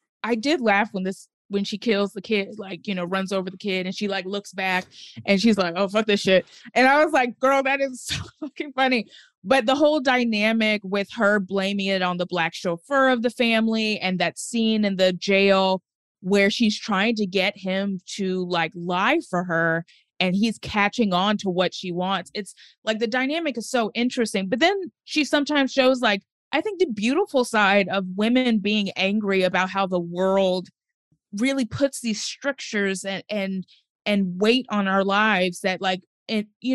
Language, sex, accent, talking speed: English, female, American, 195 wpm